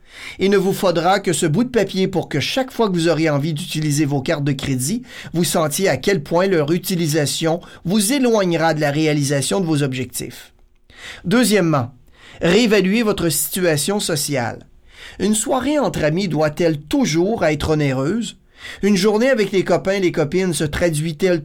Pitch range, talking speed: 155-195 Hz, 170 wpm